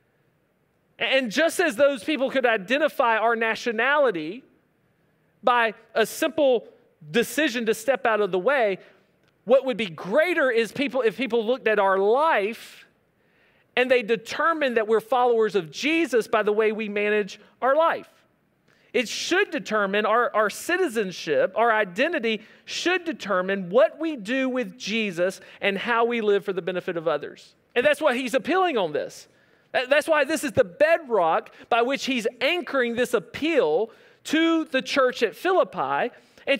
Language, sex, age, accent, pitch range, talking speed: English, male, 40-59, American, 210-295 Hz, 155 wpm